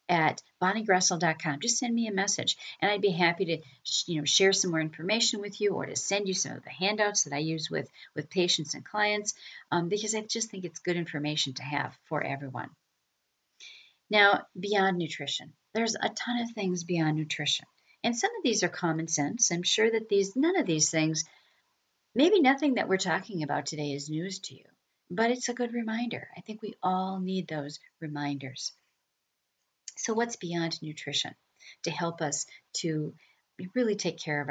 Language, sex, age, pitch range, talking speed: English, female, 50-69, 150-200 Hz, 190 wpm